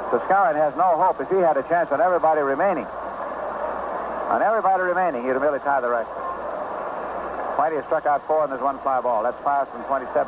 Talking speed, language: 205 wpm, English